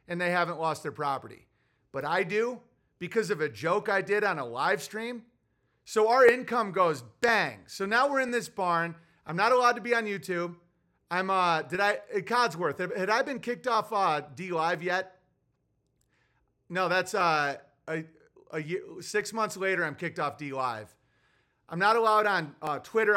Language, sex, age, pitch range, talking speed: English, male, 40-59, 155-205 Hz, 185 wpm